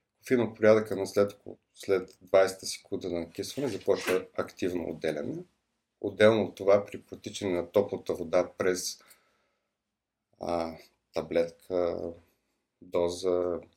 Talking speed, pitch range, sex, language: 105 wpm, 90-115 Hz, male, Bulgarian